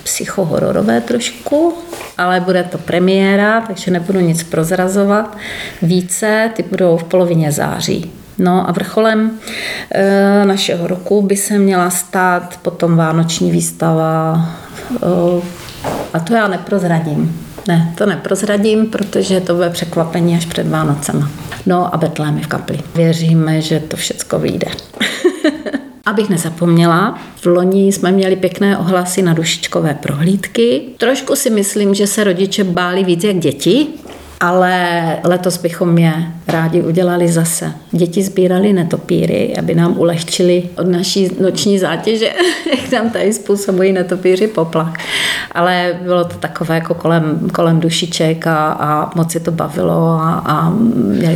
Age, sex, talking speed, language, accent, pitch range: 40-59, female, 135 wpm, Czech, native, 165-195 Hz